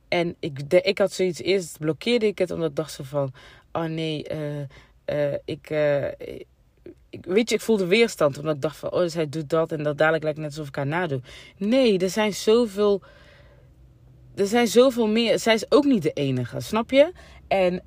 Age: 20-39